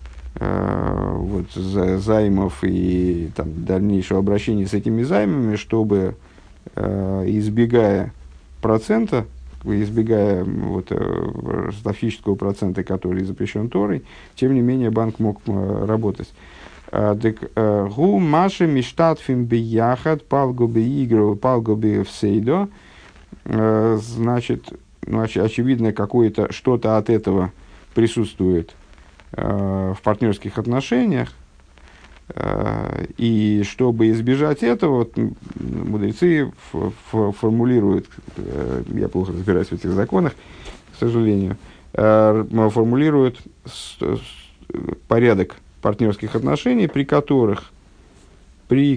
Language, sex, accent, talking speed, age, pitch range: Russian, male, native, 95 wpm, 50-69, 95-120 Hz